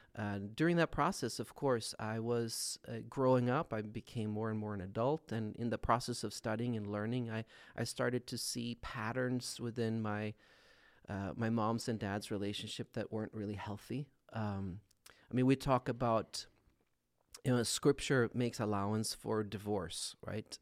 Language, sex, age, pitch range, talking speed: English, male, 30-49, 105-120 Hz, 170 wpm